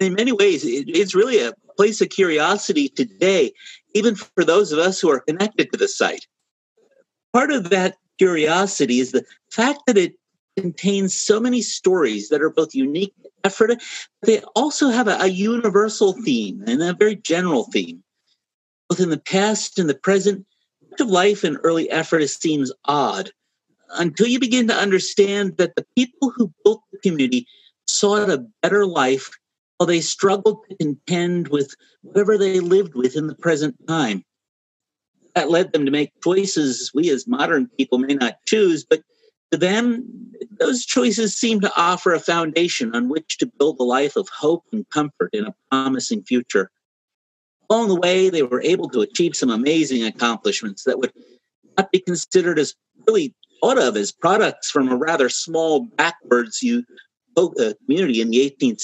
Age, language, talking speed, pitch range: 50-69, English, 170 wpm, 165-235 Hz